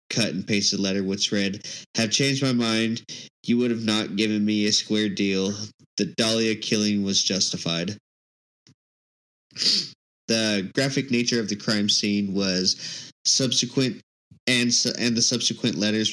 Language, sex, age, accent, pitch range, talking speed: English, male, 20-39, American, 100-115 Hz, 145 wpm